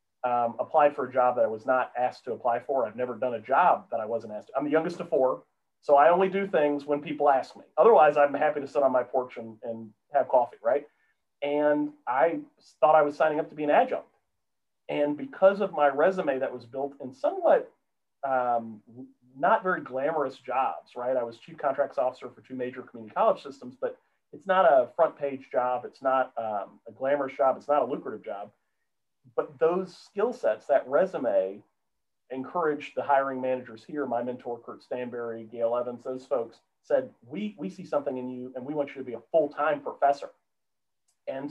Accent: American